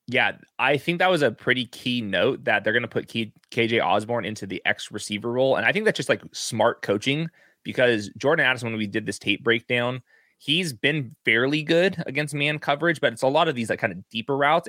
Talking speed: 230 wpm